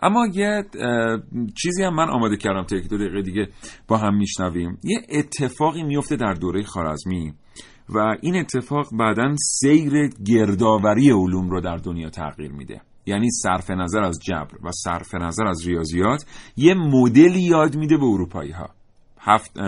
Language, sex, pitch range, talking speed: Persian, male, 95-140 Hz, 150 wpm